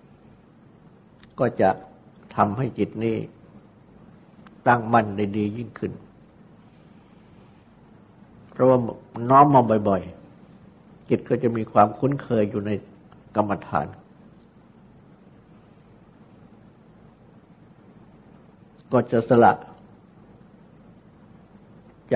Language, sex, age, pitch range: Thai, male, 60-79, 105-125 Hz